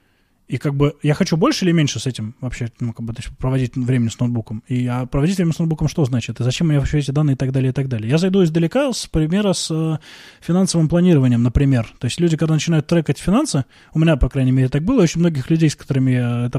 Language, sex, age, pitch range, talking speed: Russian, male, 20-39, 135-180 Hz, 250 wpm